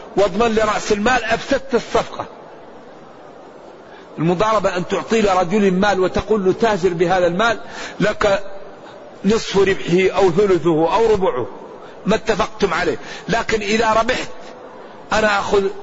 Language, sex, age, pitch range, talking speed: Arabic, male, 50-69, 190-230 Hz, 120 wpm